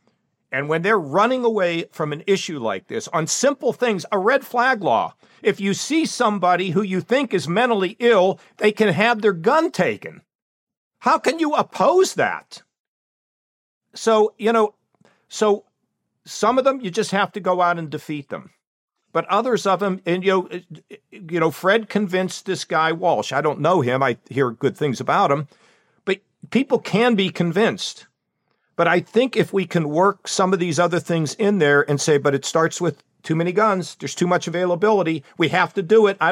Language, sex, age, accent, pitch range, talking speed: English, male, 50-69, American, 155-205 Hz, 190 wpm